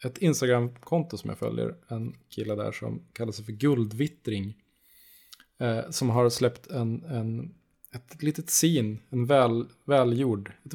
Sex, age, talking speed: male, 20-39, 145 wpm